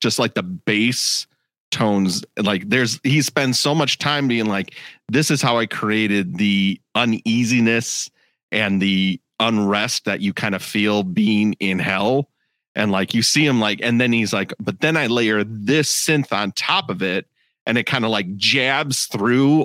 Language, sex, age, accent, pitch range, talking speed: English, male, 40-59, American, 105-135 Hz, 180 wpm